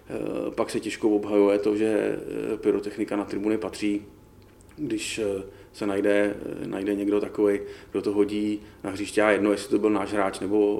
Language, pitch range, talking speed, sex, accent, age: Czech, 100-105 Hz, 160 wpm, male, native, 30-49